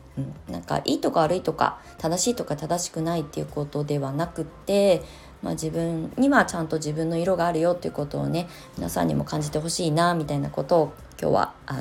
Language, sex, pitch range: Japanese, female, 140-170 Hz